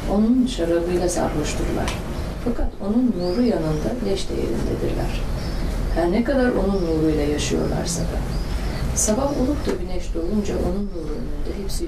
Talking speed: 130 wpm